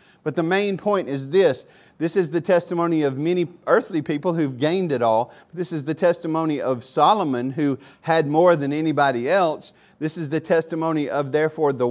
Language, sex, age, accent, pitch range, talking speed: English, male, 40-59, American, 135-175 Hz, 185 wpm